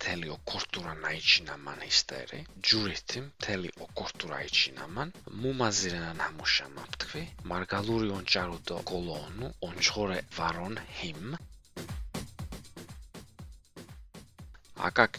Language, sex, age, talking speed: English, male, 40-59, 75 wpm